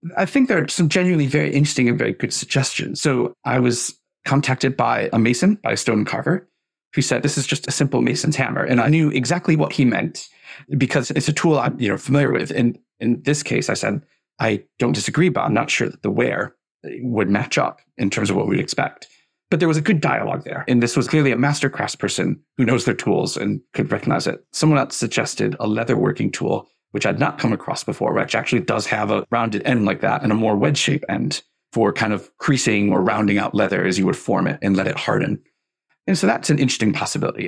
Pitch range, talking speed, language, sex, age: 120-150 Hz, 230 wpm, English, male, 40-59